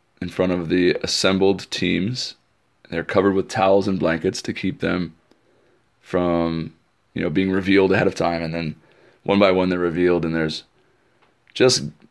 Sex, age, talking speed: male, 20-39, 165 wpm